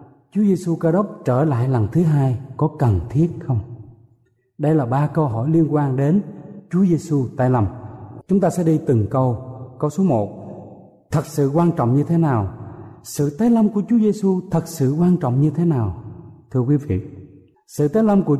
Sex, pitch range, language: male, 125-185 Hz, Vietnamese